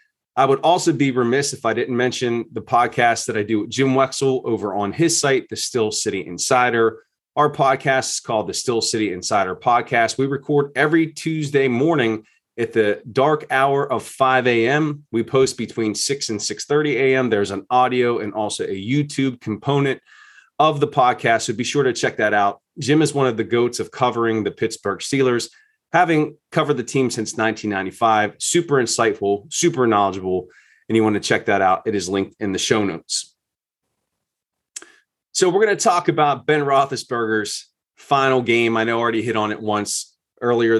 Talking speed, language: 185 wpm, English